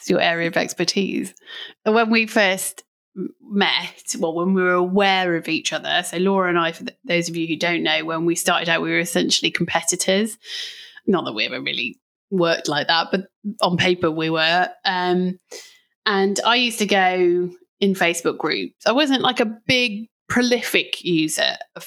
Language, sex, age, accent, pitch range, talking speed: English, female, 30-49, British, 170-235 Hz, 180 wpm